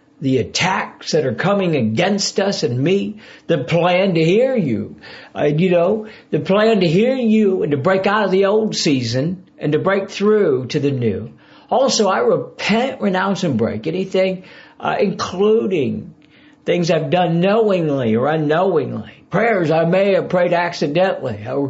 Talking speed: 160 wpm